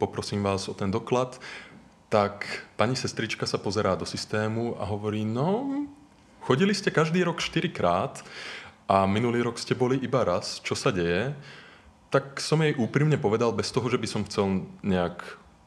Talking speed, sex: 160 wpm, male